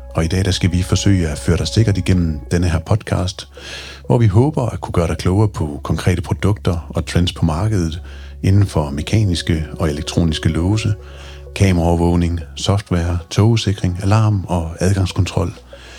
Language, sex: Danish, male